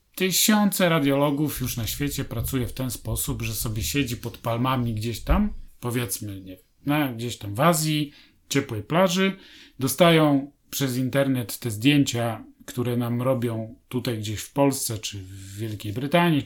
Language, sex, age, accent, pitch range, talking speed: Polish, male, 30-49, native, 120-155 Hz, 155 wpm